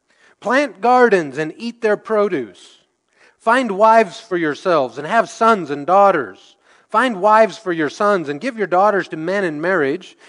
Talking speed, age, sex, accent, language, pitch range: 165 wpm, 40-59, male, American, English, 165-215 Hz